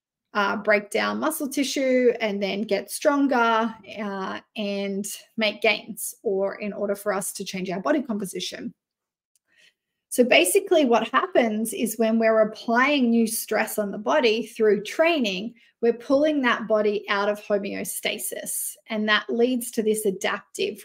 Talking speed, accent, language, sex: 145 wpm, Australian, English, female